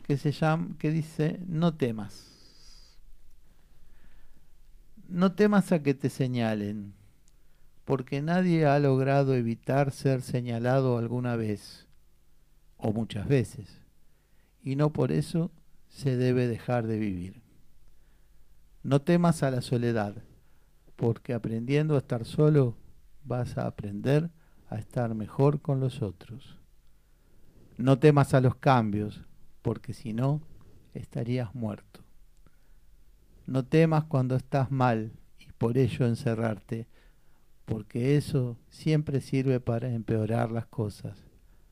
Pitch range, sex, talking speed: 115-145 Hz, male, 115 wpm